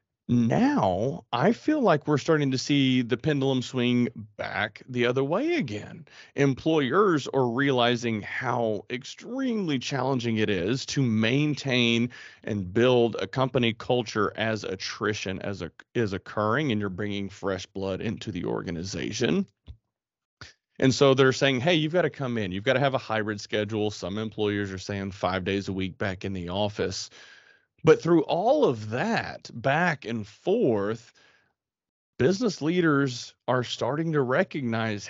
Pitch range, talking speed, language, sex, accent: 105-135 Hz, 150 wpm, English, male, American